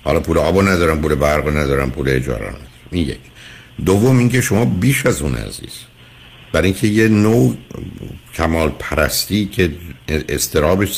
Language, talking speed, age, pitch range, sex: Persian, 135 wpm, 60-79, 75-105 Hz, male